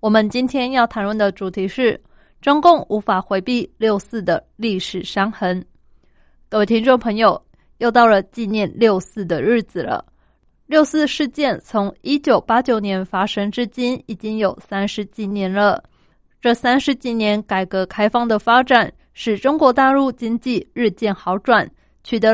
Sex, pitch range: female, 205-255 Hz